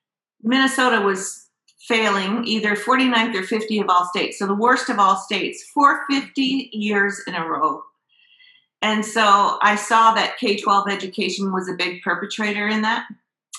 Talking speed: 150 wpm